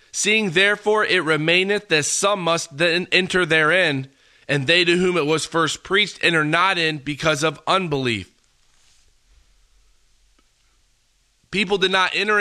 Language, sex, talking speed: English, male, 135 wpm